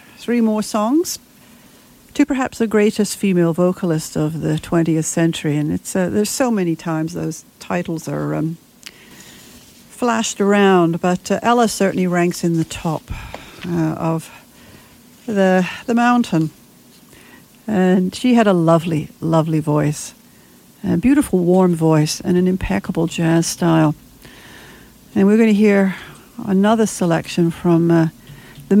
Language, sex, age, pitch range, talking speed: English, female, 60-79, 160-220 Hz, 135 wpm